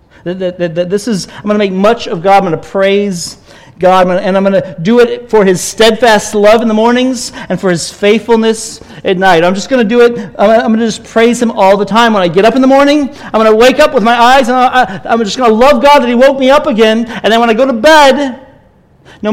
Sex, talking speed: male, 285 wpm